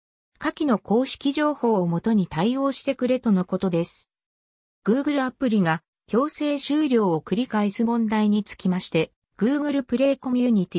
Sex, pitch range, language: female, 175-255 Hz, Japanese